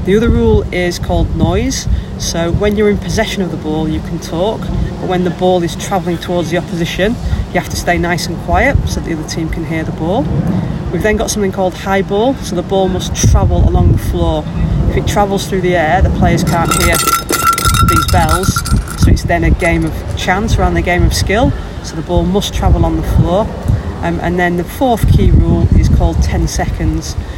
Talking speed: 215 wpm